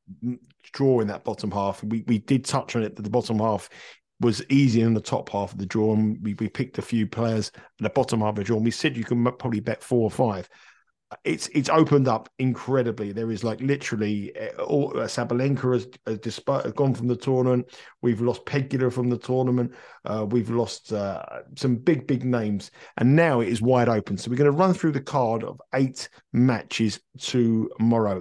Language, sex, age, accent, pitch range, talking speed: English, male, 50-69, British, 110-135 Hz, 210 wpm